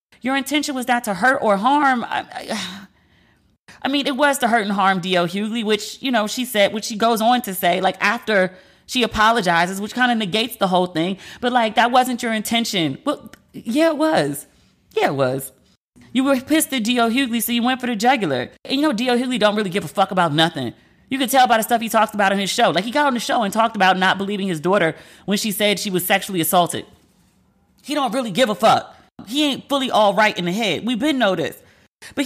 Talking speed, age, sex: 240 wpm, 30-49, female